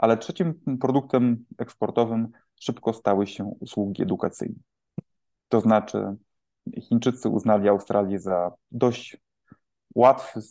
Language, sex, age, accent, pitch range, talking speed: Polish, male, 20-39, native, 100-125 Hz, 95 wpm